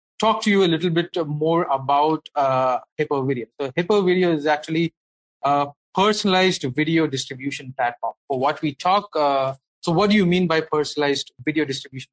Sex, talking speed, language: male, 175 wpm, English